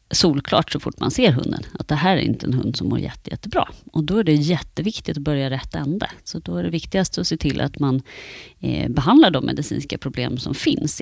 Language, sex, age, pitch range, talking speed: Swedish, female, 30-49, 145-195 Hz, 230 wpm